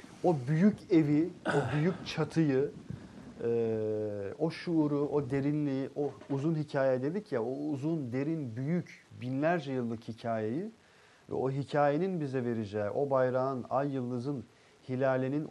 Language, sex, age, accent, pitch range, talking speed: Turkish, male, 40-59, native, 115-150 Hz, 125 wpm